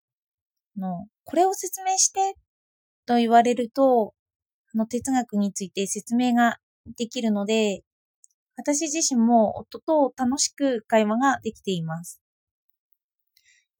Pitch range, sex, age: 210-310 Hz, female, 20-39